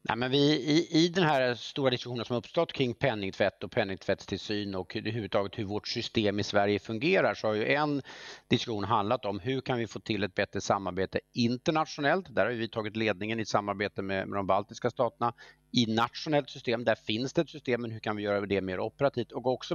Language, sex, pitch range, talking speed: English, male, 100-130 Hz, 215 wpm